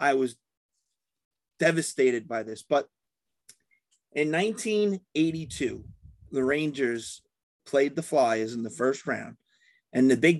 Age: 30-49